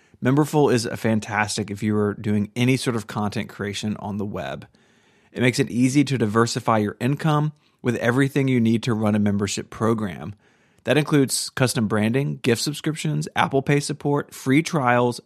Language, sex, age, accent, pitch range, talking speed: English, male, 30-49, American, 110-135 Hz, 175 wpm